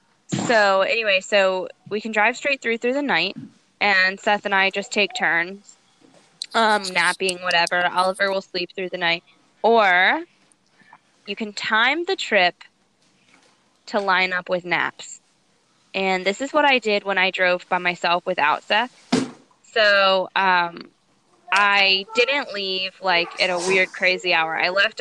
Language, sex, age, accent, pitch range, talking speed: English, female, 10-29, American, 180-220 Hz, 155 wpm